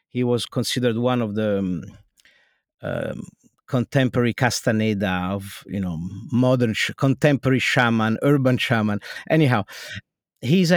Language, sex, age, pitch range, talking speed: English, male, 50-69, 115-150 Hz, 115 wpm